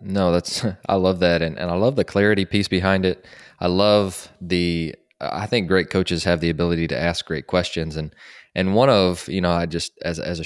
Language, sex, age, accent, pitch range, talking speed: English, male, 20-39, American, 85-95 Hz, 225 wpm